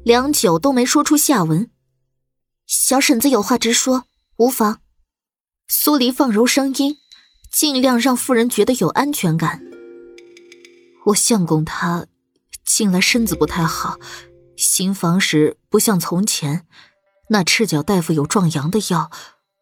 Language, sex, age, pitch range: Chinese, female, 20-39, 165-250 Hz